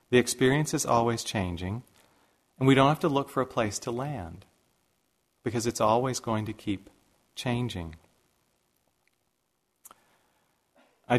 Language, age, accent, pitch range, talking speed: English, 40-59, American, 95-125 Hz, 140 wpm